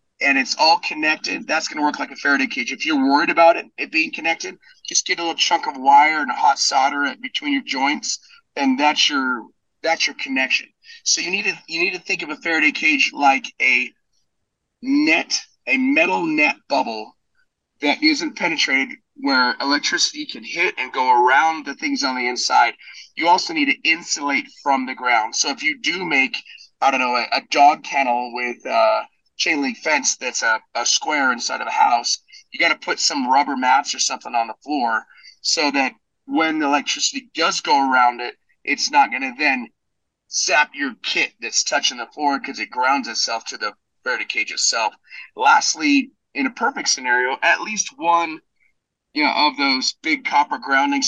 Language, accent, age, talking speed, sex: English, American, 30-49, 195 wpm, male